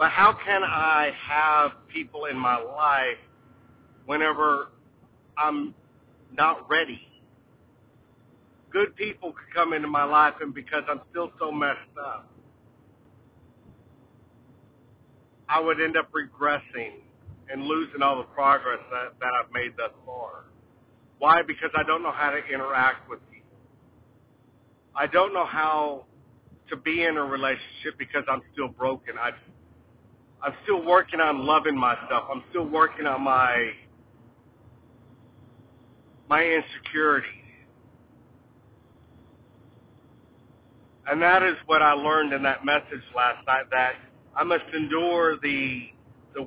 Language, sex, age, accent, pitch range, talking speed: English, male, 50-69, American, 125-155 Hz, 125 wpm